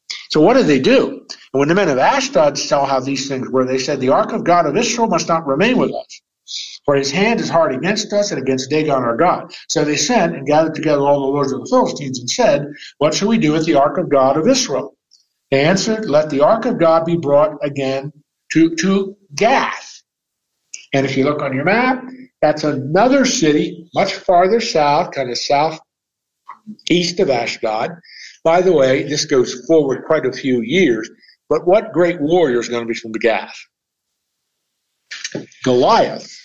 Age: 60-79